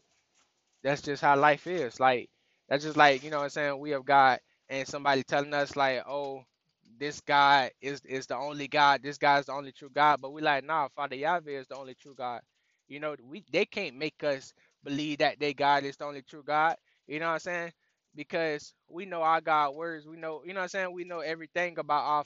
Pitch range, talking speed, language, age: 140-165 Hz, 235 wpm, English, 10-29